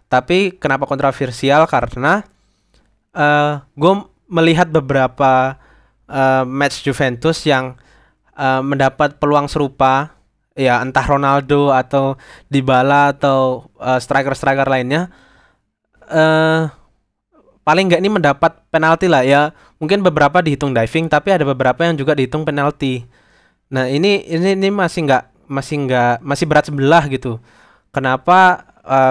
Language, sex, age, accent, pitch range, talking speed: Indonesian, male, 20-39, native, 130-150 Hz, 125 wpm